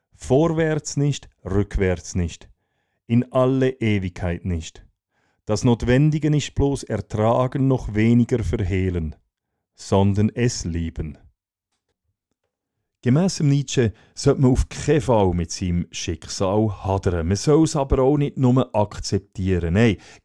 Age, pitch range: 40-59, 95-130 Hz